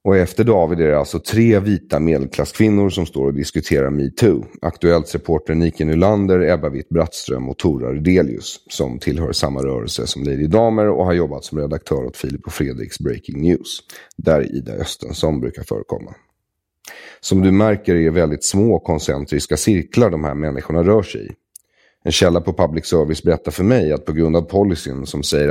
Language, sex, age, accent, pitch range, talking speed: English, male, 30-49, Swedish, 75-85 Hz, 180 wpm